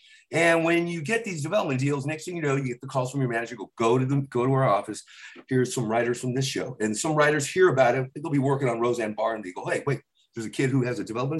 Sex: male